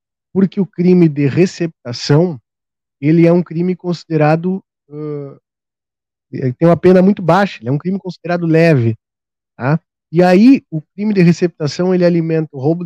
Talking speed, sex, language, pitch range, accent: 145 wpm, male, Portuguese, 135-170 Hz, Brazilian